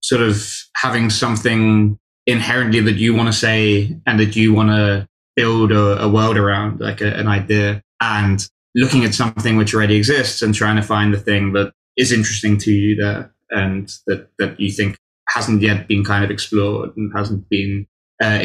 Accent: British